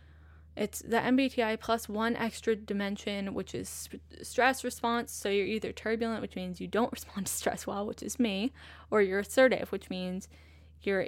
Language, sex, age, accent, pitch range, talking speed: English, female, 10-29, American, 175-220 Hz, 175 wpm